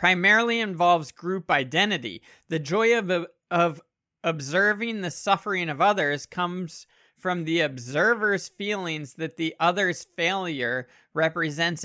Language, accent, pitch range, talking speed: English, American, 150-185 Hz, 115 wpm